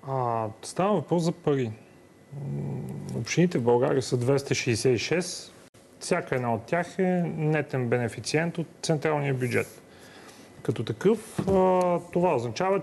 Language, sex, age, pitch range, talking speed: Bulgarian, male, 30-49, 120-165 Hz, 110 wpm